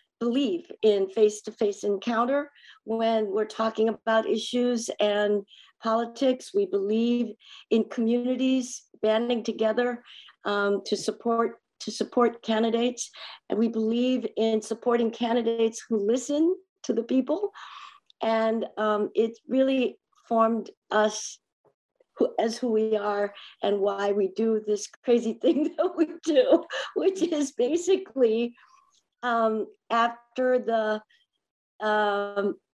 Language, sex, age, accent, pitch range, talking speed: English, female, 50-69, American, 215-250 Hz, 115 wpm